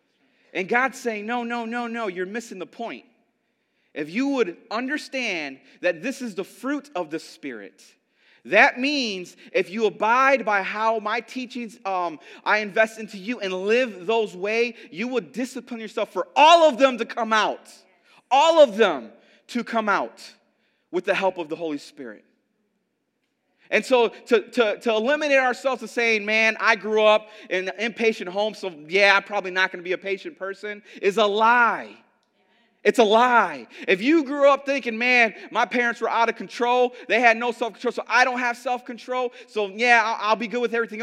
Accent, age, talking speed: American, 30-49, 185 wpm